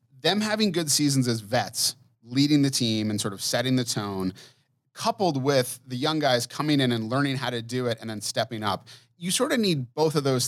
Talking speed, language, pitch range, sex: 225 wpm, English, 110-140 Hz, male